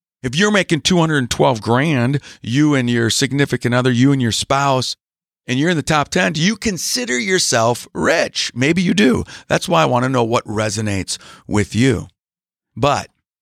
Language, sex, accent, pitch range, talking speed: English, male, American, 120-185 Hz, 175 wpm